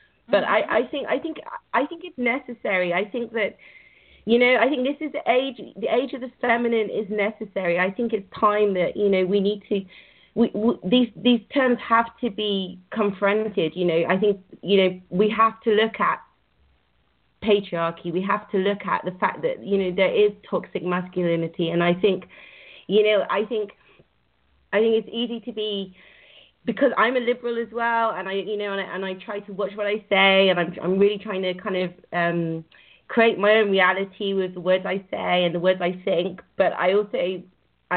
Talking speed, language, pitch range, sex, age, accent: 205 wpm, English, 185-225 Hz, female, 30-49, British